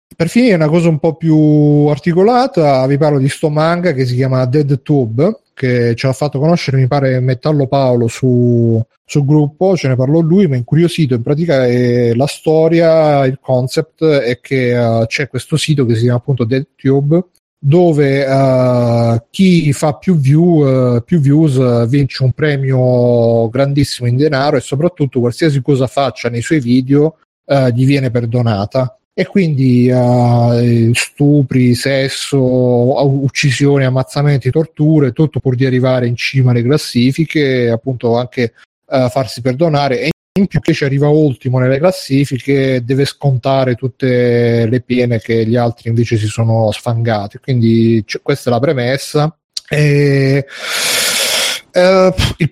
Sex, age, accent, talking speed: male, 40-59, native, 145 wpm